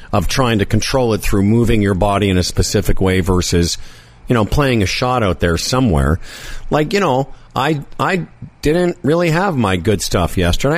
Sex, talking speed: male, 190 wpm